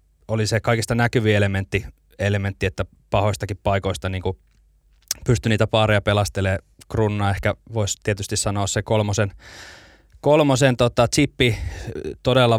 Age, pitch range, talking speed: 20-39, 100-115 Hz, 120 wpm